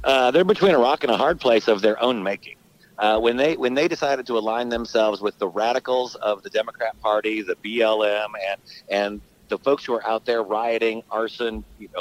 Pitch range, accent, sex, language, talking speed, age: 115-165 Hz, American, male, English, 210 wpm, 50-69